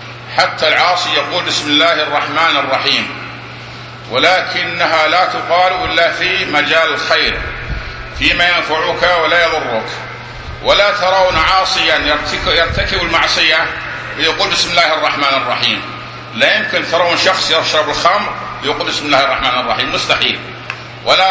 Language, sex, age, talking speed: Arabic, male, 50-69, 115 wpm